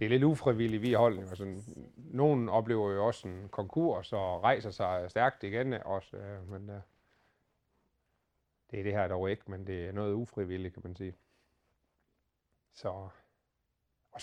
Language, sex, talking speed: Danish, male, 155 wpm